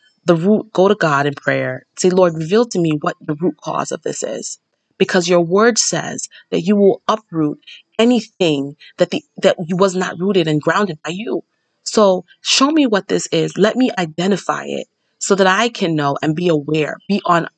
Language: English